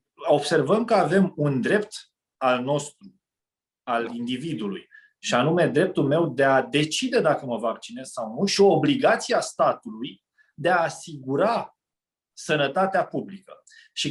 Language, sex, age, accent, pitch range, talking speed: Romanian, male, 30-49, native, 145-210 Hz, 135 wpm